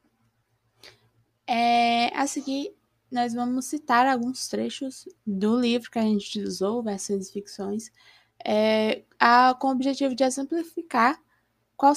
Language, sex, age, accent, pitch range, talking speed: Portuguese, female, 10-29, Brazilian, 205-255 Hz, 110 wpm